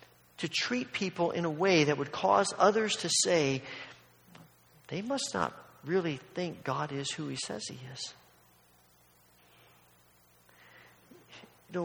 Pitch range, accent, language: 140-195 Hz, American, English